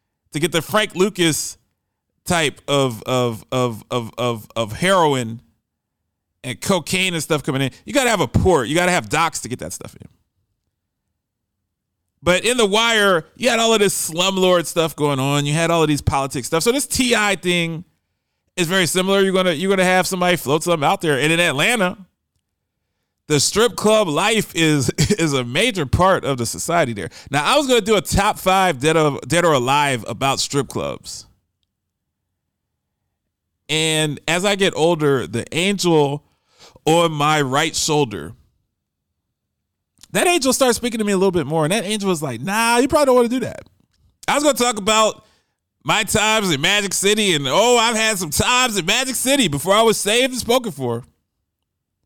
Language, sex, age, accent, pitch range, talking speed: English, male, 30-49, American, 130-200 Hz, 185 wpm